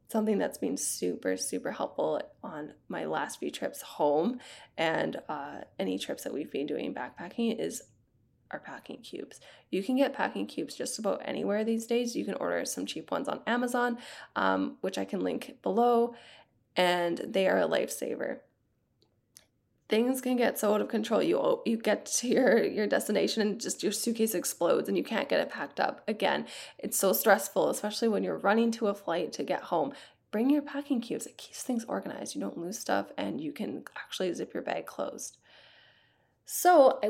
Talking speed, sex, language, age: 190 wpm, female, English, 20-39